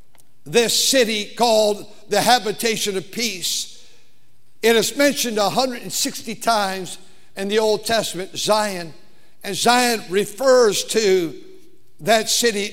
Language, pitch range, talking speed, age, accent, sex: English, 190-235 Hz, 110 wpm, 60-79, American, male